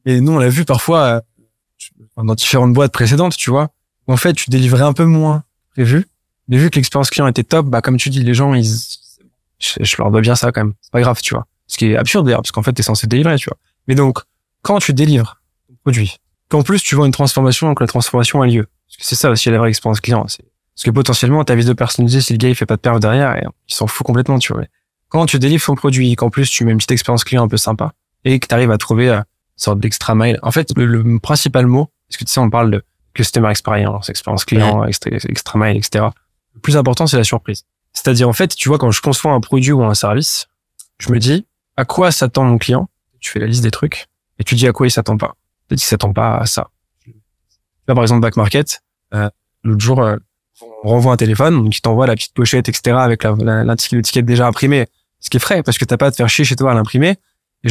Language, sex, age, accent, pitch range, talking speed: French, male, 20-39, French, 110-135 Hz, 260 wpm